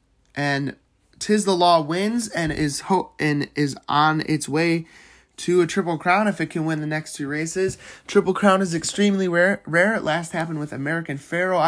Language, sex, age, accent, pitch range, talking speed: English, male, 20-39, American, 145-180 Hz, 190 wpm